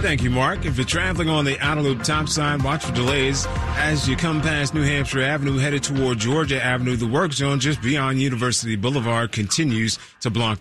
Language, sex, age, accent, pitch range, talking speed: English, male, 30-49, American, 115-150 Hz, 190 wpm